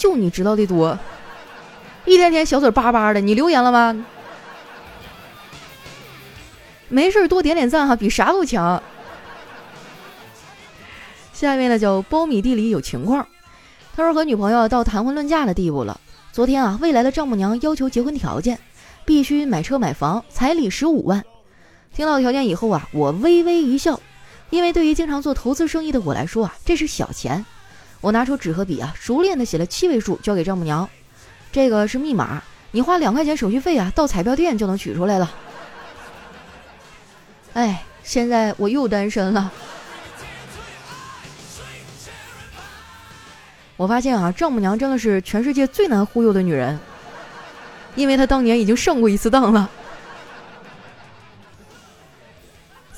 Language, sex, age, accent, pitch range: Chinese, female, 20-39, native, 200-285 Hz